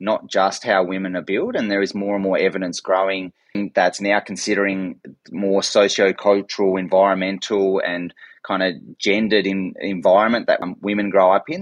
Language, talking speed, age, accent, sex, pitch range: English, 155 wpm, 30-49, Australian, male, 95-110 Hz